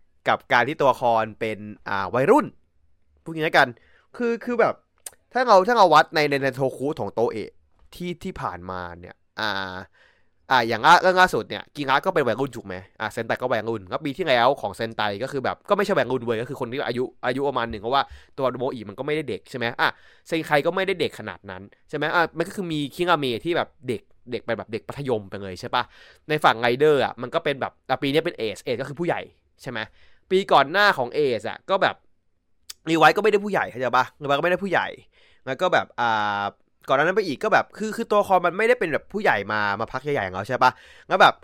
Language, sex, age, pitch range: Thai, male, 20-39, 115-180 Hz